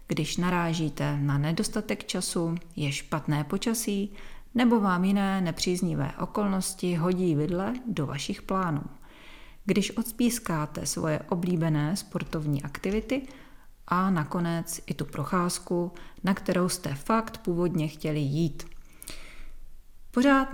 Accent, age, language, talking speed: native, 40-59, Czech, 110 wpm